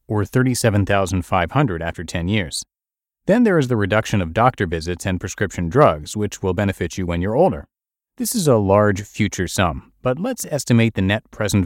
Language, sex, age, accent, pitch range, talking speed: English, male, 30-49, American, 90-120 Hz, 180 wpm